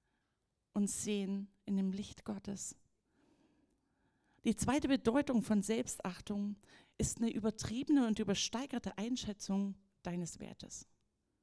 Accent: German